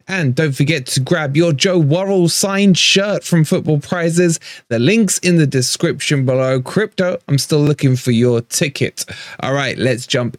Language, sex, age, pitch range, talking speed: English, male, 20-39, 125-170 Hz, 175 wpm